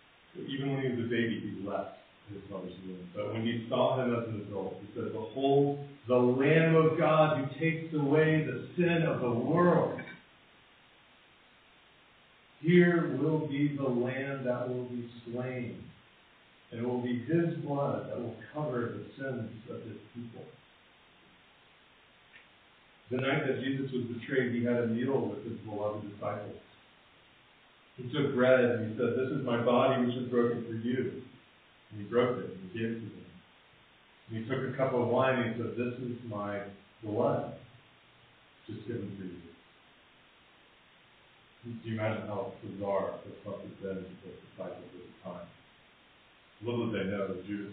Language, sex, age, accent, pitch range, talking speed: English, male, 50-69, American, 105-130 Hz, 180 wpm